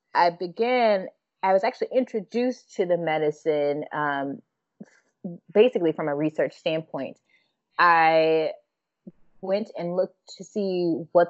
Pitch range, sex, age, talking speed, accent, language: 160-190 Hz, female, 20-39, 115 wpm, American, English